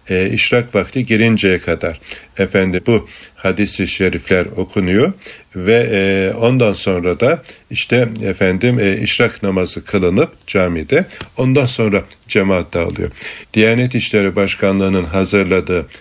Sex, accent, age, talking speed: male, native, 50-69, 110 wpm